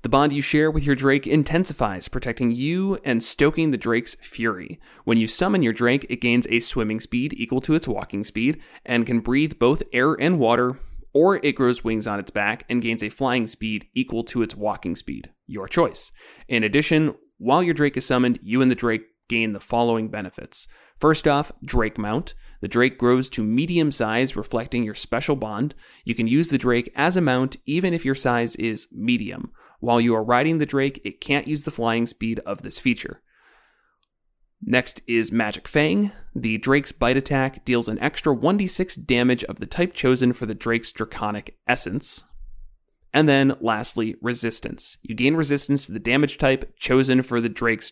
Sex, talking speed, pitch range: male, 190 wpm, 115-145 Hz